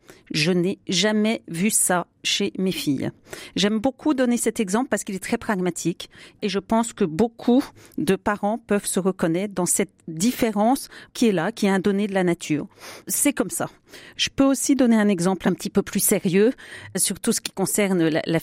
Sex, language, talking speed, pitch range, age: female, French, 195 wpm, 180-225 Hz, 40-59